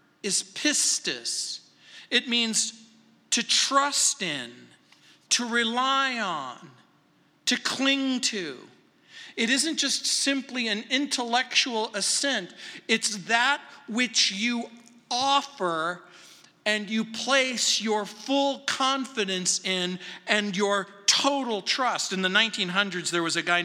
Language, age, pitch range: English, 50-69, 180-235 Hz